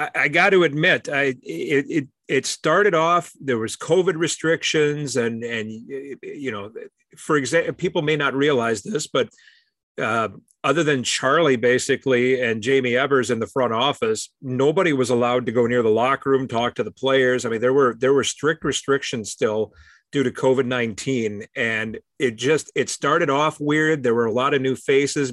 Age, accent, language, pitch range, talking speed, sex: 40-59, American, English, 115-145 Hz, 185 wpm, male